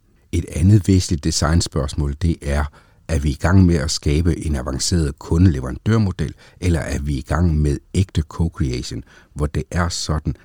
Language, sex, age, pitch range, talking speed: Danish, male, 60-79, 75-95 Hz, 165 wpm